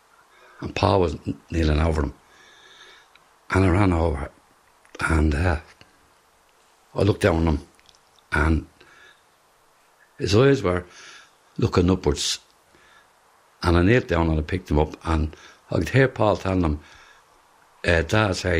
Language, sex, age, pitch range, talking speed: English, male, 60-79, 80-105 Hz, 130 wpm